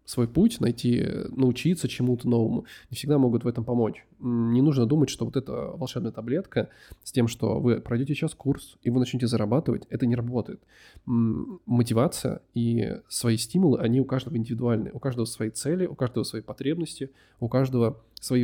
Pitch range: 115-130 Hz